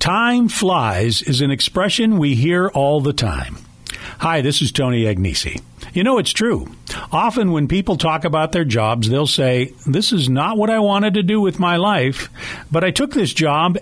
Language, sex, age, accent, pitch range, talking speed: English, male, 50-69, American, 120-170 Hz, 190 wpm